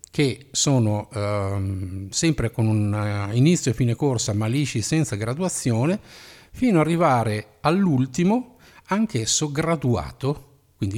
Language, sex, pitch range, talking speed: Italian, male, 105-155 Hz, 115 wpm